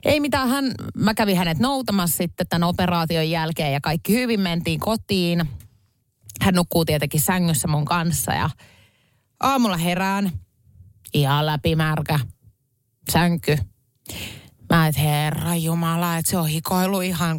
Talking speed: 130 wpm